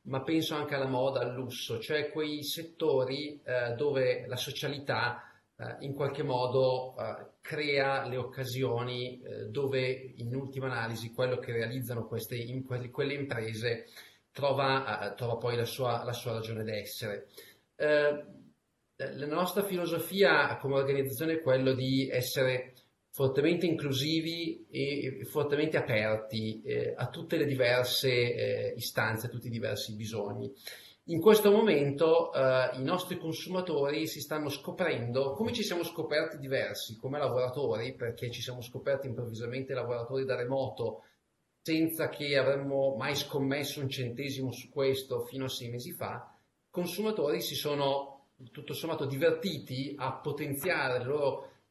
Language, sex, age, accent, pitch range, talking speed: Italian, male, 30-49, native, 125-150 Hz, 140 wpm